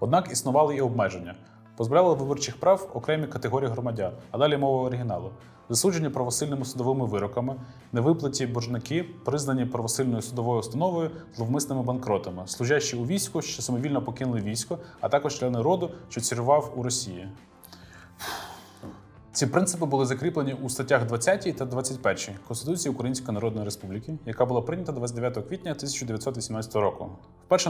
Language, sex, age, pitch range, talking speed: Ukrainian, male, 20-39, 115-145 Hz, 135 wpm